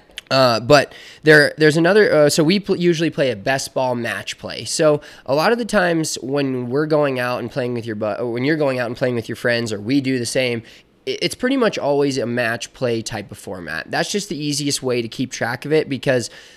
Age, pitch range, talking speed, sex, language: 20-39, 120-150 Hz, 245 wpm, male, English